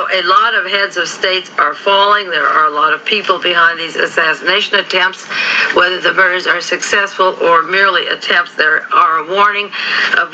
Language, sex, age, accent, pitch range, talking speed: English, female, 60-79, American, 170-200 Hz, 180 wpm